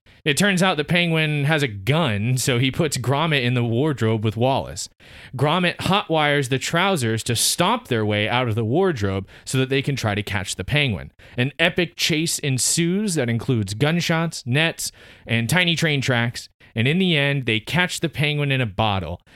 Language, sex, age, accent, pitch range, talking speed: English, male, 30-49, American, 105-145 Hz, 190 wpm